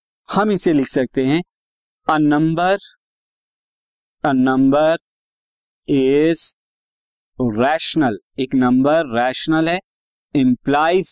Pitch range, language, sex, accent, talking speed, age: 130-175 Hz, Hindi, male, native, 80 wpm, 50-69